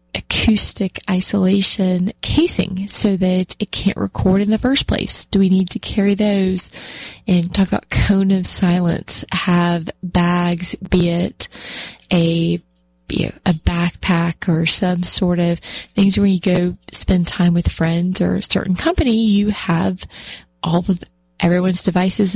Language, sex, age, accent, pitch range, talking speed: English, female, 20-39, American, 170-200 Hz, 150 wpm